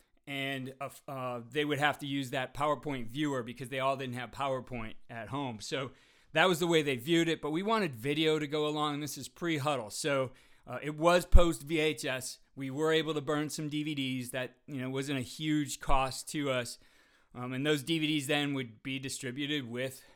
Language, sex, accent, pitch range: English, male, American, 130-155 Hz